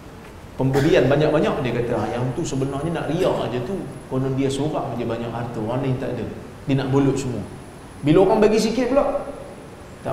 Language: Malayalam